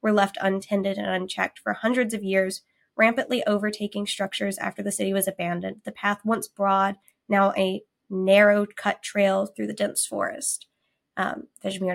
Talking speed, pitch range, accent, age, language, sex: 155 wpm, 195-235 Hz, American, 20-39, English, female